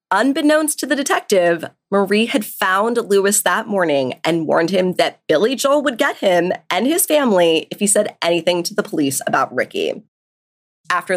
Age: 20-39